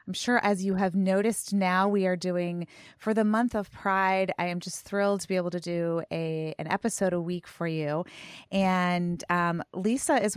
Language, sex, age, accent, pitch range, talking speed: English, female, 30-49, American, 175-210 Hz, 195 wpm